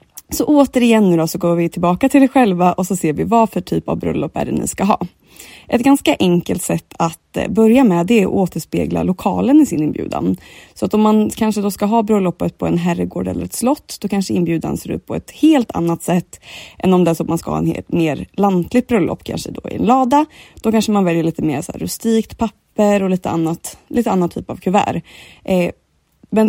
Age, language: 20-39, Swedish